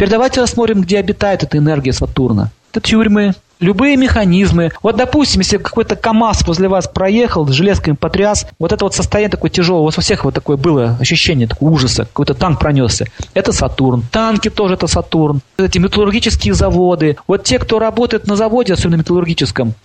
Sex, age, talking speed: male, 40-59, 170 wpm